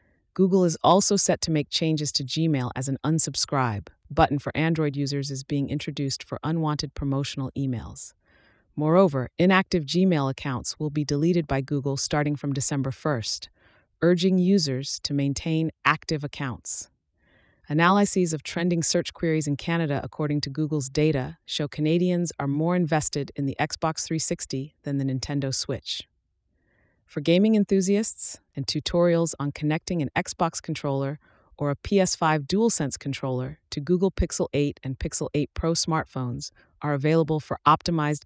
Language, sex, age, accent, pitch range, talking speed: English, female, 30-49, American, 135-165 Hz, 145 wpm